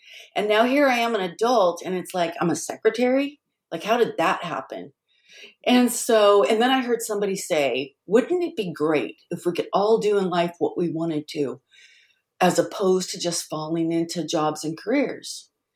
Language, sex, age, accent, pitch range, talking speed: English, female, 50-69, American, 165-215 Hz, 190 wpm